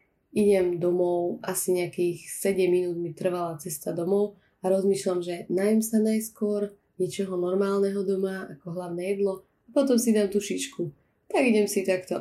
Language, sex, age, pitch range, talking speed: Slovak, female, 20-39, 170-195 Hz, 155 wpm